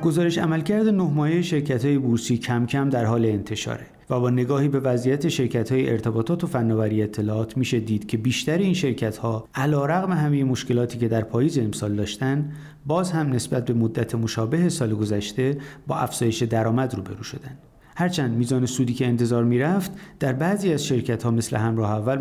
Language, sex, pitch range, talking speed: Persian, male, 115-145 Hz, 175 wpm